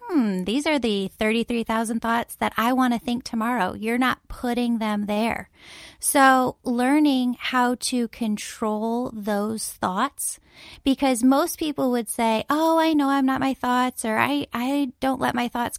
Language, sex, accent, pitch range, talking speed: English, female, American, 210-255 Hz, 165 wpm